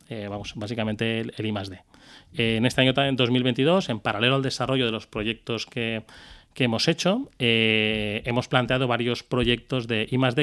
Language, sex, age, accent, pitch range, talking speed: Spanish, male, 30-49, Spanish, 115-150 Hz, 175 wpm